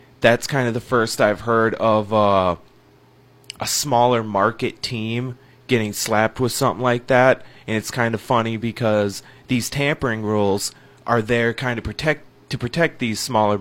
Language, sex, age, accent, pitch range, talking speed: English, male, 20-39, American, 105-125 Hz, 175 wpm